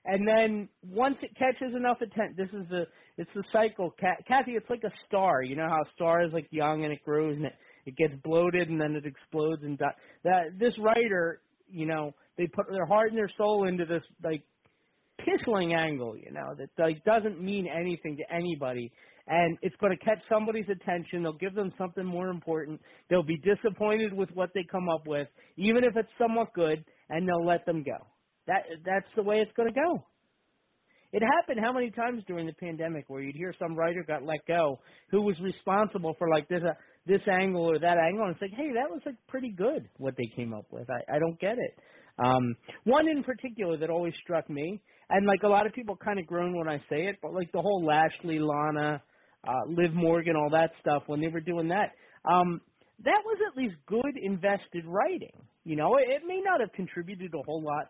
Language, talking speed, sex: English, 215 wpm, male